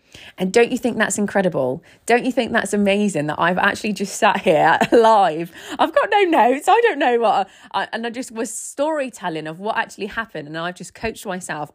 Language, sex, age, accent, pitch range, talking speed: English, female, 20-39, British, 175-230 Hz, 210 wpm